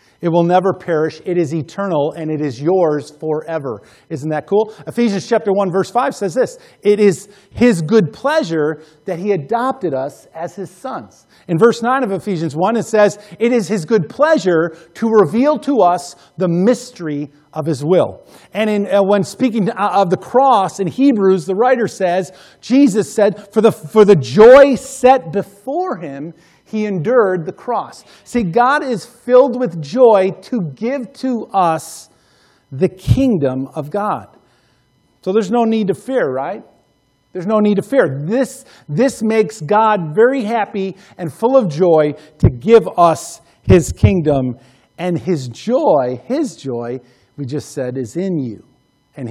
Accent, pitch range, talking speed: American, 155-225 Hz, 165 wpm